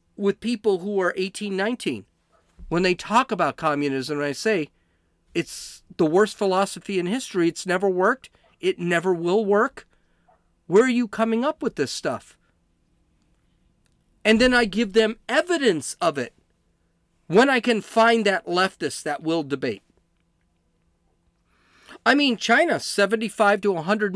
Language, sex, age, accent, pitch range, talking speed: English, male, 40-59, American, 150-220 Hz, 140 wpm